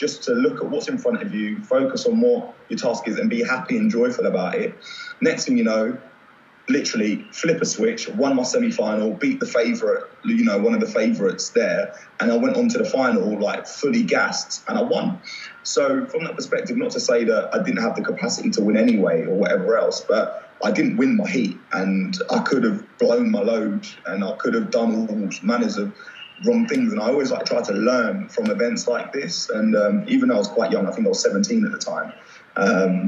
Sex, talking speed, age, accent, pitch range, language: male, 230 wpm, 20-39, British, 210-245 Hz, English